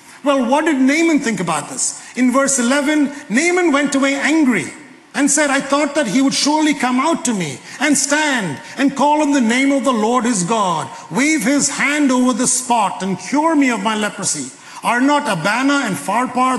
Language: English